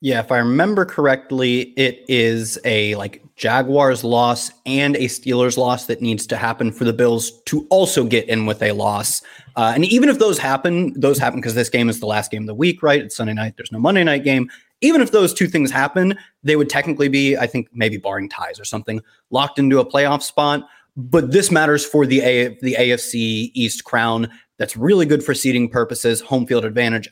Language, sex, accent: English, male, American